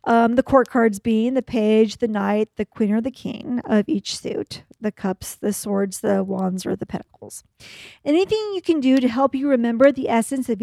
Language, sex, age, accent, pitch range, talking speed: English, female, 40-59, American, 215-275 Hz, 210 wpm